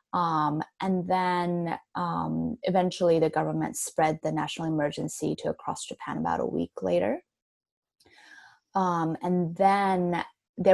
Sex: female